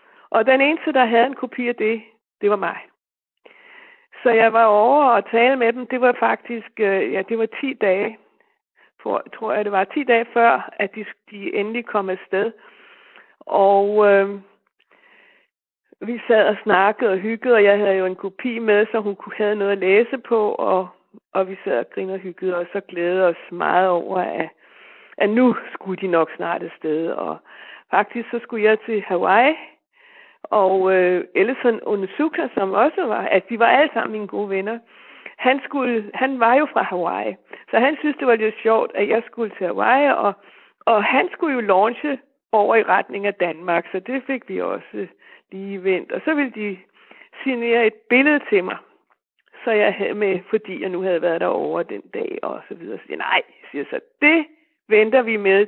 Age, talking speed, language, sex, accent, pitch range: 60-79, 195 wpm, Danish, female, native, 195-255 Hz